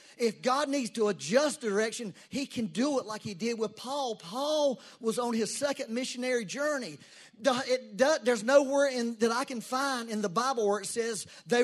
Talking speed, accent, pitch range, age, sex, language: 180 wpm, American, 210-270 Hz, 40-59, male, English